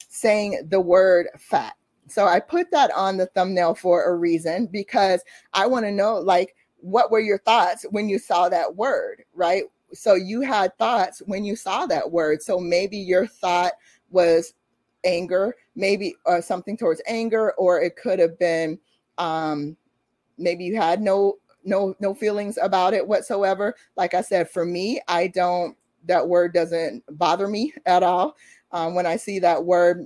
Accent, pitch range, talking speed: American, 170-205 Hz, 170 wpm